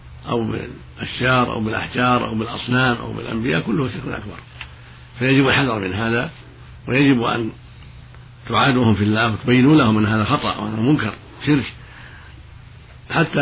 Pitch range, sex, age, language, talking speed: 105-125 Hz, male, 50-69, Arabic, 130 wpm